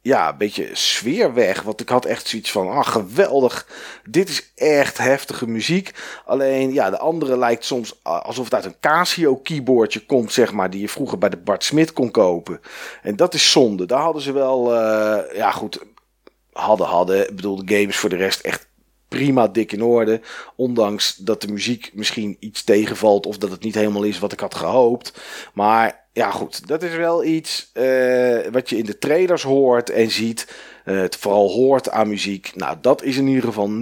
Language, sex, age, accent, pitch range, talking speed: Dutch, male, 40-59, Dutch, 110-150 Hz, 195 wpm